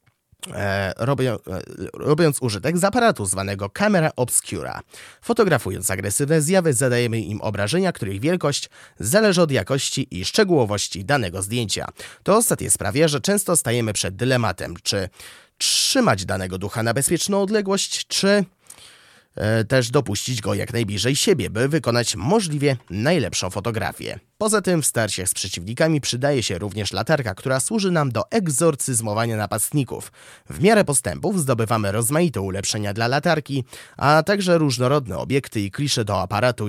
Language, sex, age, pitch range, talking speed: Polish, male, 20-39, 105-155 Hz, 130 wpm